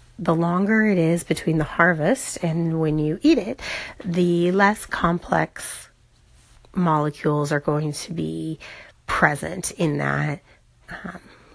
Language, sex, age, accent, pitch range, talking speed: English, female, 30-49, American, 160-210 Hz, 125 wpm